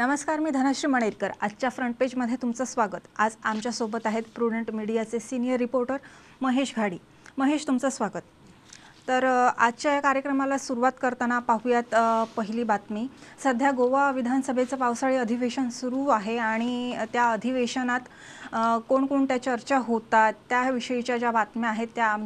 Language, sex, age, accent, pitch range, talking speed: English, female, 30-49, Indian, 230-260 Hz, 120 wpm